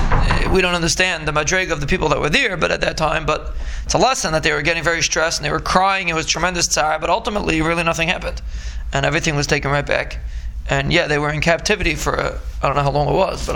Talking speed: 265 wpm